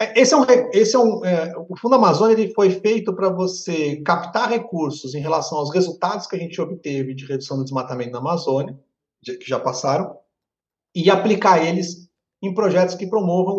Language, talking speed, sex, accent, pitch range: Portuguese, 185 wpm, male, Brazilian, 155-195 Hz